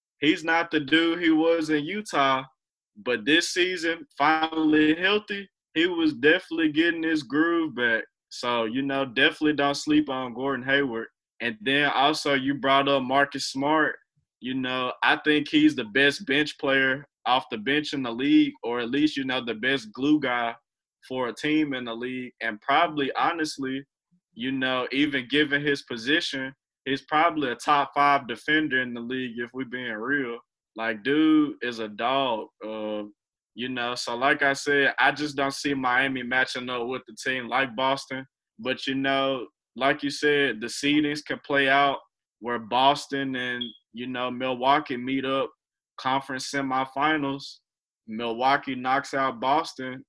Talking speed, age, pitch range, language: 165 wpm, 20-39, 130-150 Hz, English